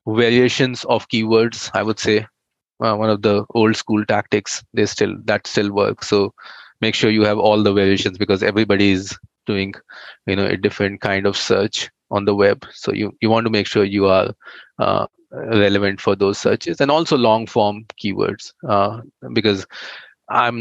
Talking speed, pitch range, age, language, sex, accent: 180 wpm, 100-115 Hz, 20-39, English, male, Indian